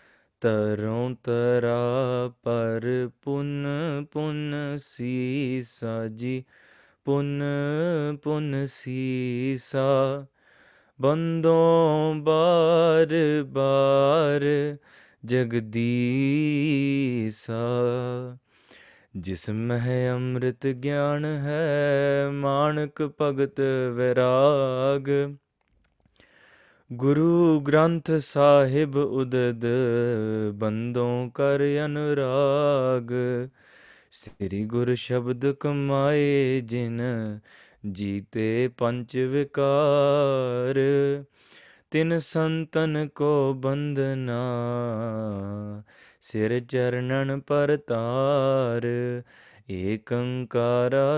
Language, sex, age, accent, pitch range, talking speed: English, male, 20-39, Indian, 120-145 Hz, 55 wpm